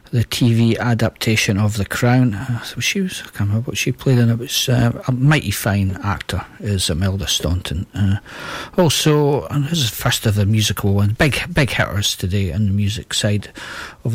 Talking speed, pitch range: 185 wpm, 105-130 Hz